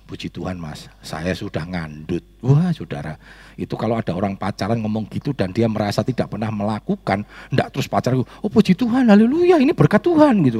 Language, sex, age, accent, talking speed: Indonesian, male, 40-59, native, 185 wpm